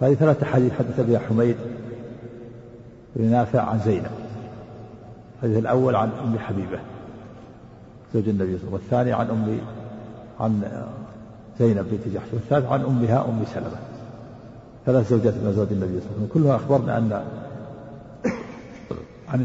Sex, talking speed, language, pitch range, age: male, 140 wpm, Arabic, 110-130 Hz, 50-69